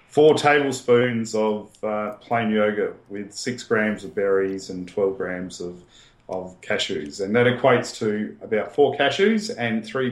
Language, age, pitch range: English, 40-59, 95-125 Hz